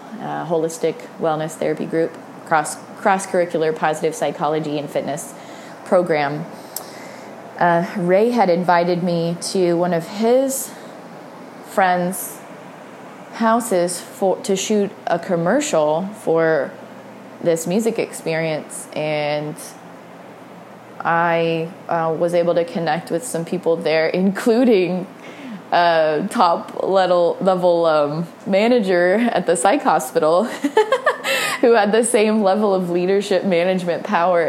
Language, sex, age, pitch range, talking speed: English, female, 20-39, 160-195 Hz, 115 wpm